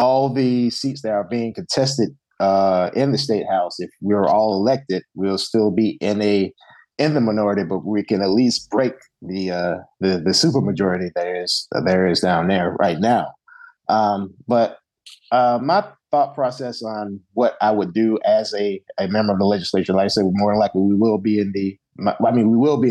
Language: English